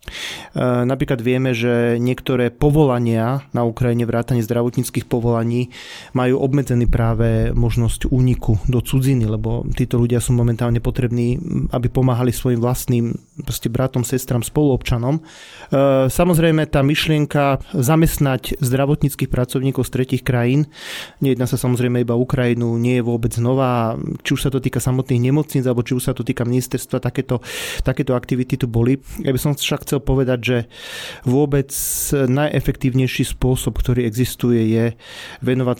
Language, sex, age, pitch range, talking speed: Slovak, male, 30-49, 120-135 Hz, 135 wpm